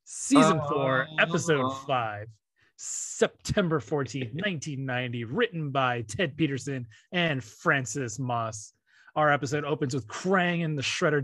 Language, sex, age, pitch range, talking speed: English, male, 30-49, 135-180 Hz, 115 wpm